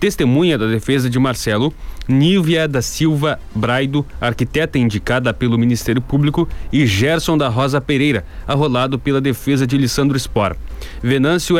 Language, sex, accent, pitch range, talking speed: Portuguese, male, Brazilian, 125-155 Hz, 135 wpm